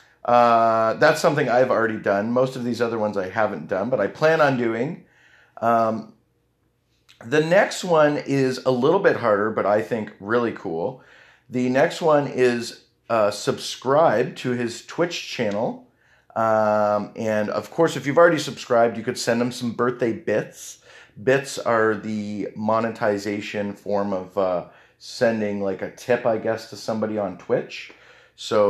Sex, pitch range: male, 105-130 Hz